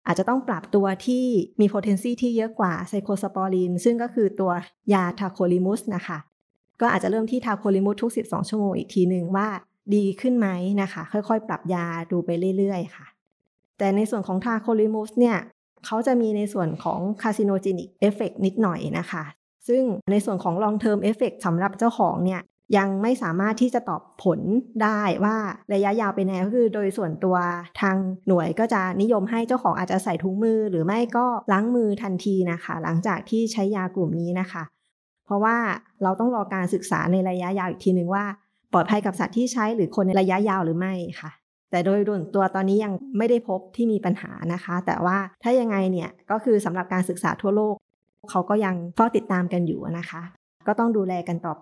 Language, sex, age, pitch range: Thai, female, 20-39, 185-220 Hz